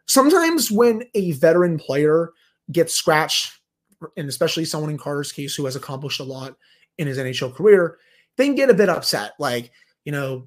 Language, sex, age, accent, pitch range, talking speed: English, male, 30-49, American, 135-175 Hz, 170 wpm